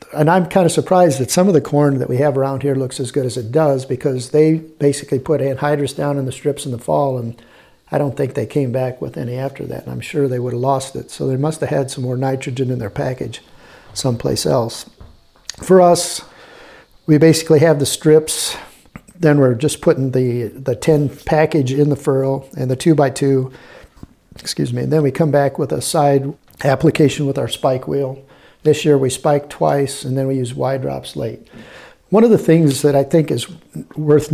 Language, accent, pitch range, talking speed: English, American, 135-160 Hz, 215 wpm